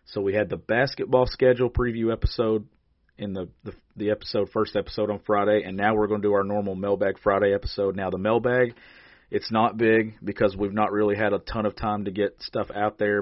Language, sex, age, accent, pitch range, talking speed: English, male, 40-59, American, 95-115 Hz, 220 wpm